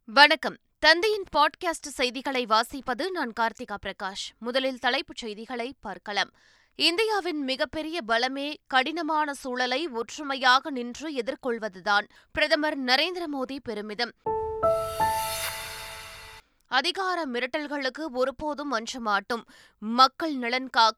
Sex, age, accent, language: female, 20-39, native, Tamil